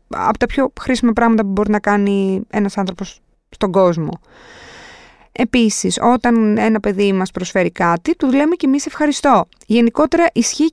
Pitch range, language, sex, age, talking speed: 180-250 Hz, Greek, female, 20-39, 150 wpm